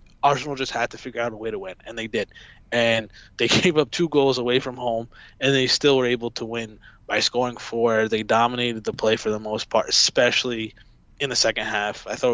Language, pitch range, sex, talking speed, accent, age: English, 115-130 Hz, male, 230 wpm, American, 20-39